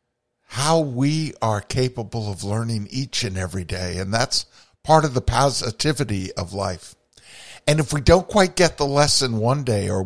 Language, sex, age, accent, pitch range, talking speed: English, male, 50-69, American, 100-125 Hz, 175 wpm